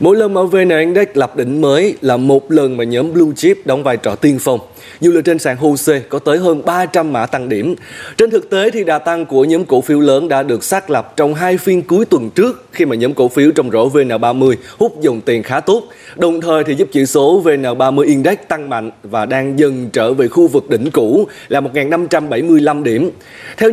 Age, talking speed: 20-39, 225 wpm